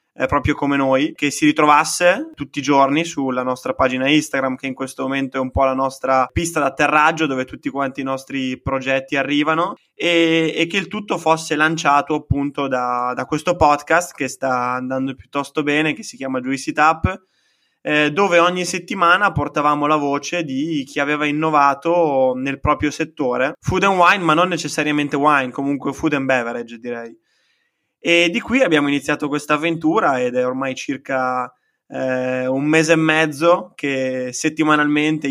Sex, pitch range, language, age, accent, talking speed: male, 135-155 Hz, Italian, 20-39, native, 165 wpm